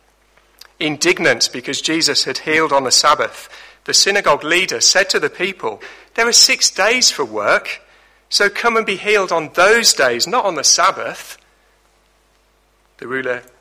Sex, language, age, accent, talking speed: male, English, 40-59, British, 155 wpm